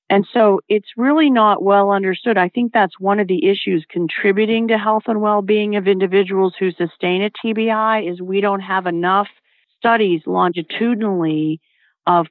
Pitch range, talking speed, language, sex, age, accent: 165-205 Hz, 160 wpm, English, female, 50-69, American